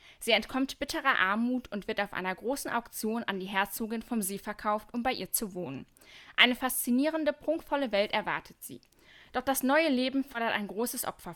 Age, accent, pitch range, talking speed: 10-29, German, 220-275 Hz, 185 wpm